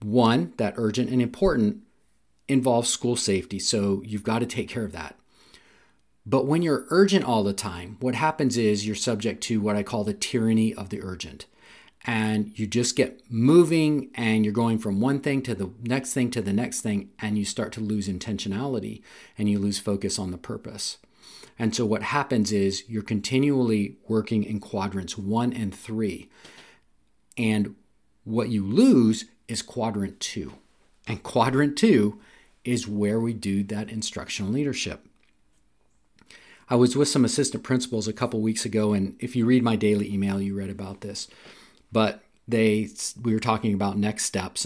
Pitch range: 105-125 Hz